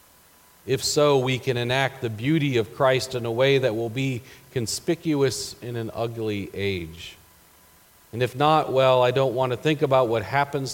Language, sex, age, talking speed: English, male, 40-59, 180 wpm